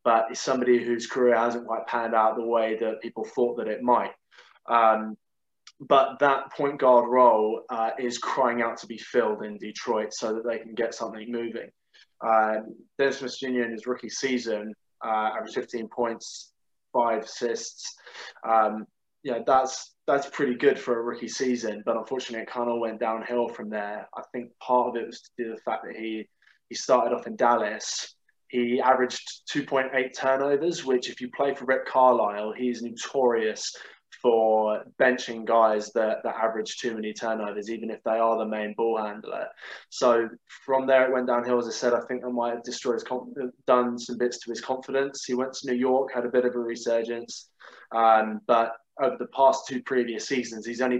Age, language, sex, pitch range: 20-39, English, male, 110-125 Hz